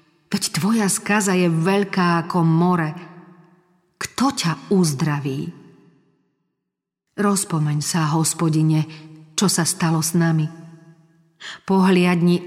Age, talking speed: 40-59, 90 wpm